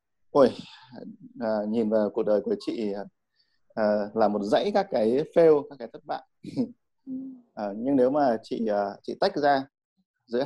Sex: male